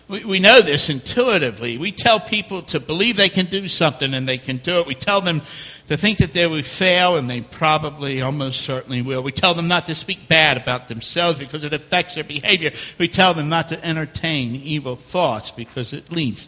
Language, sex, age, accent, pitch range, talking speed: English, male, 60-79, American, 125-165 Hz, 210 wpm